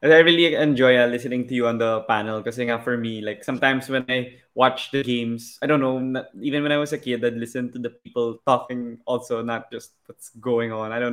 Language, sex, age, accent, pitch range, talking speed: Filipino, male, 20-39, native, 115-130 Hz, 250 wpm